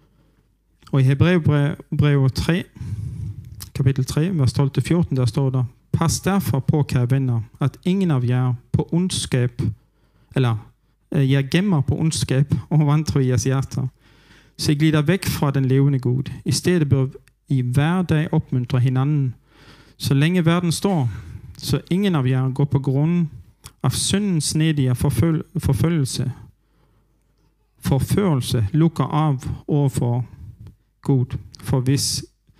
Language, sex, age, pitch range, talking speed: Danish, male, 40-59, 130-155 Hz, 130 wpm